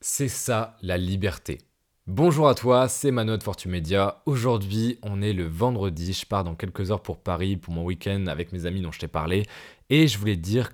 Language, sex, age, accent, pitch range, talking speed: French, male, 20-39, French, 90-115 Hz, 210 wpm